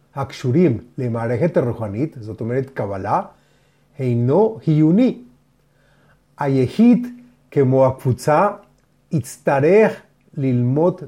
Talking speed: 70 wpm